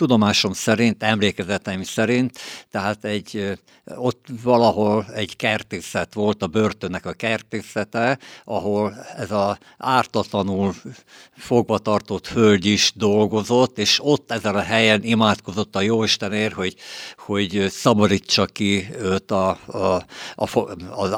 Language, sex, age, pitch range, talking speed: Hungarian, male, 60-79, 100-110 Hz, 115 wpm